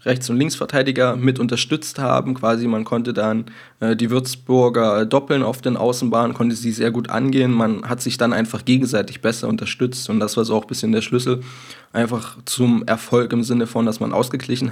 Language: German